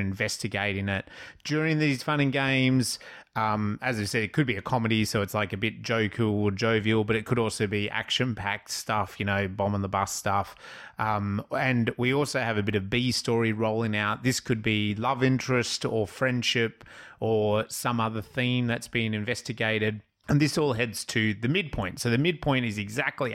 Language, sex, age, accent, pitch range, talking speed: English, male, 30-49, Australian, 105-125 Hz, 190 wpm